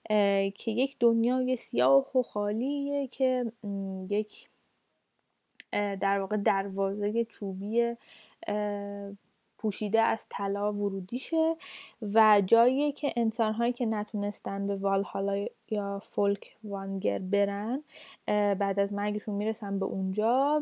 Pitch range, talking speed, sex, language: 210-275 Hz, 100 wpm, female, Persian